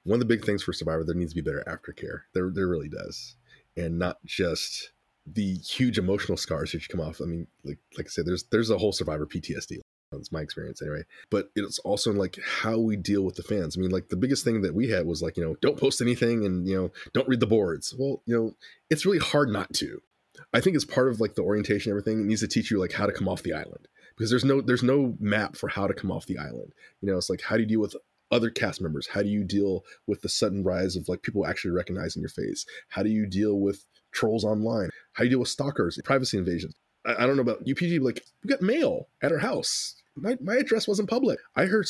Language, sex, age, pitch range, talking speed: English, male, 20-39, 95-125 Hz, 260 wpm